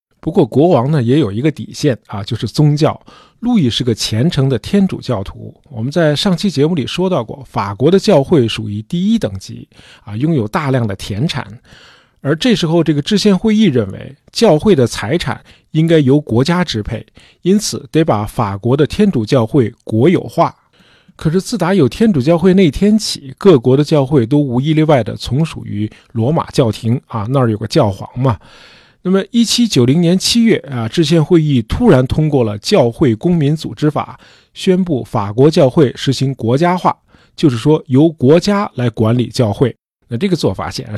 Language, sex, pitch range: Chinese, male, 115-165 Hz